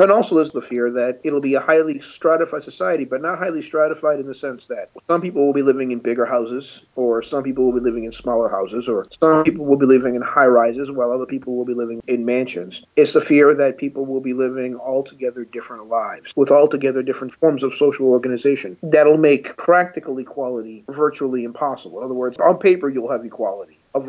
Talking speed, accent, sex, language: 215 wpm, American, male, English